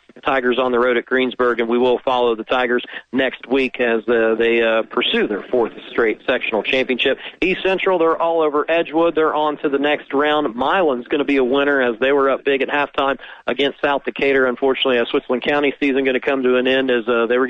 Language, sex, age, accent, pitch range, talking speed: English, male, 40-59, American, 125-145 Hz, 230 wpm